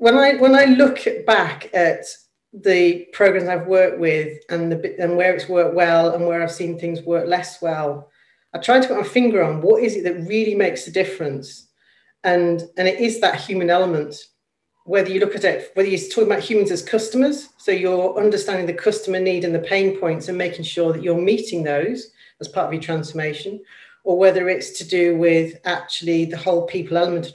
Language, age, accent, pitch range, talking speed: English, 40-59, British, 165-195 Hz, 210 wpm